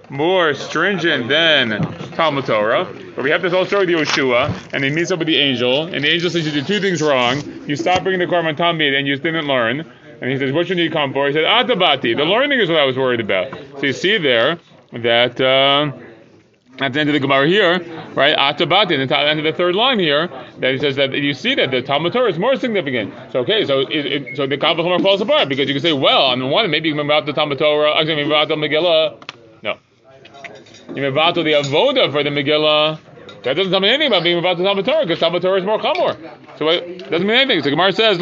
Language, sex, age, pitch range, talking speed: English, male, 30-49, 140-185 Hz, 250 wpm